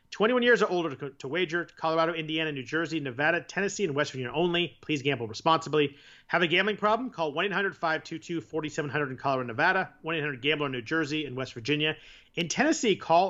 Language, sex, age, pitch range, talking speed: English, male, 40-59, 135-180 Hz, 170 wpm